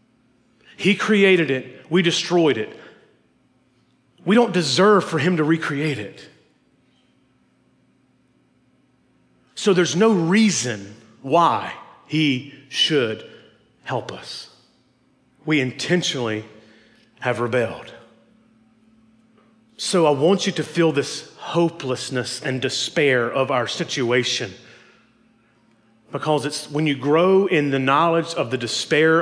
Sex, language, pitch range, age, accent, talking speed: male, English, 130-180 Hz, 40-59, American, 105 wpm